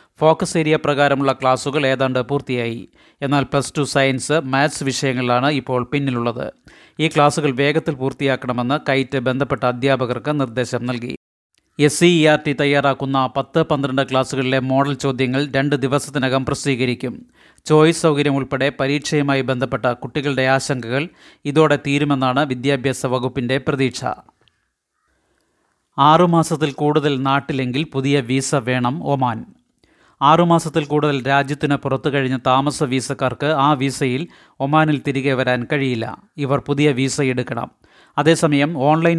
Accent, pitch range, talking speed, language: native, 130-150 Hz, 110 wpm, Malayalam